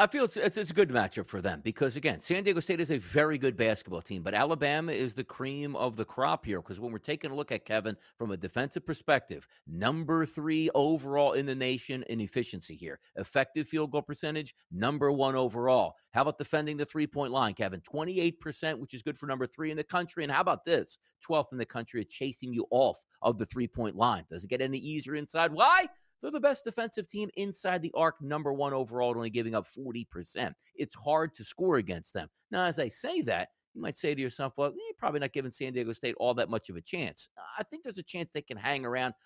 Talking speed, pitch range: 230 wpm, 120-160 Hz